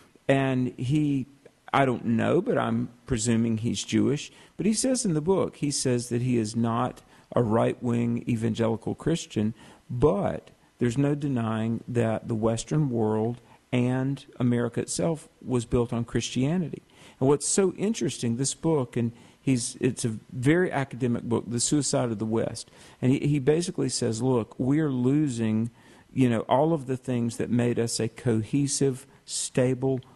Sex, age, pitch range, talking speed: male, 50-69, 115-140 Hz, 160 wpm